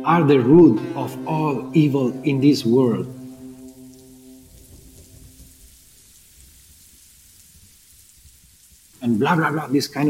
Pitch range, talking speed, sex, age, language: 120-165 Hz, 90 wpm, male, 40-59, English